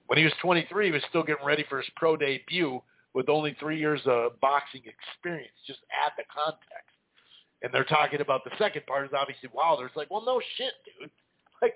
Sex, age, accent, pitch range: male, 50-69, American, 130-165 Hz